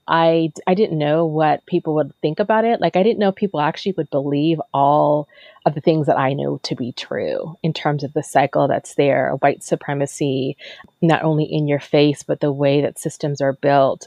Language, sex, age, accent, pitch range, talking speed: English, female, 30-49, American, 140-160 Hz, 210 wpm